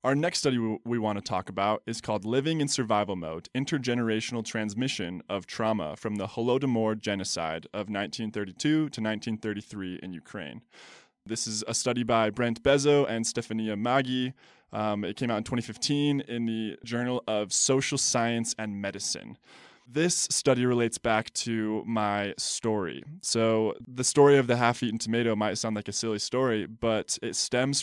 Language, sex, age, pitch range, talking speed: English, male, 20-39, 105-125 Hz, 160 wpm